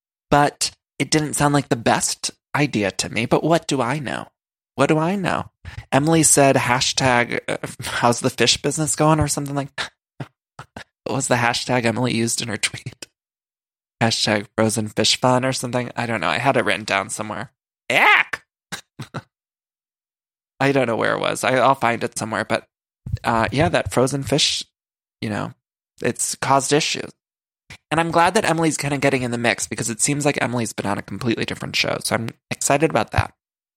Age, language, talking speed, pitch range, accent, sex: 20-39, English, 185 wpm, 115-140 Hz, American, male